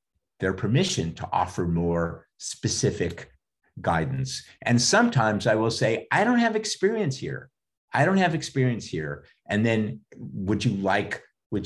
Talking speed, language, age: 145 wpm, English, 50-69